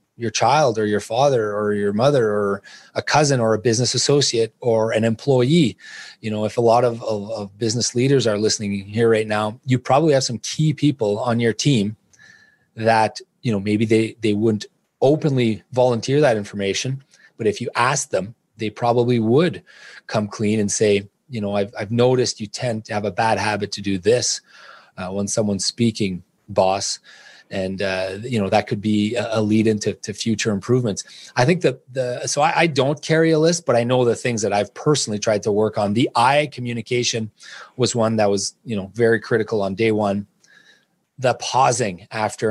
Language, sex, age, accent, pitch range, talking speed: English, male, 30-49, Canadian, 105-125 Hz, 195 wpm